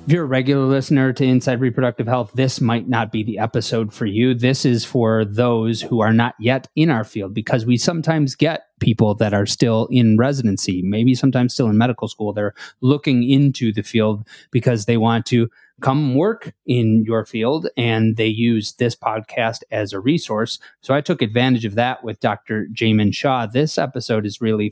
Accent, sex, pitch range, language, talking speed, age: American, male, 110-130 Hz, English, 195 wpm, 30-49